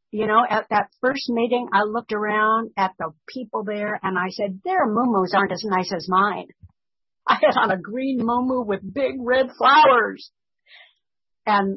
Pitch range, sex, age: 185-235 Hz, female, 60-79